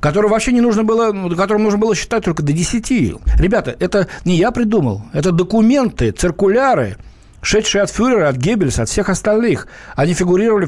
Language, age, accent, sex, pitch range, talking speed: Russian, 60-79, native, male, 130-200 Hz, 165 wpm